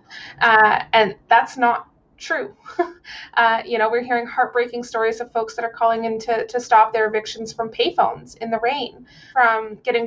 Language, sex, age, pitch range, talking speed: English, female, 20-39, 215-250 Hz, 180 wpm